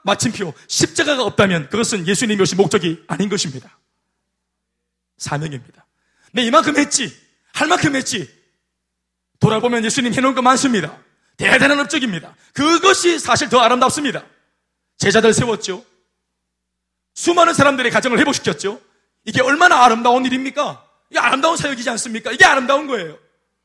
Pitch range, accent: 155-255 Hz, native